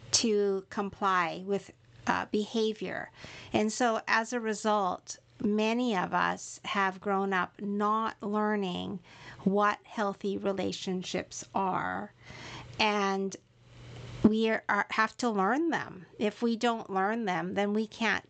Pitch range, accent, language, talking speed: 185-225 Hz, American, English, 125 wpm